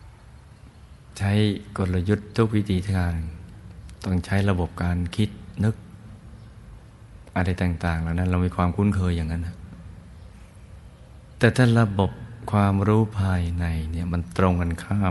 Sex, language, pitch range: male, Thai, 85-95 Hz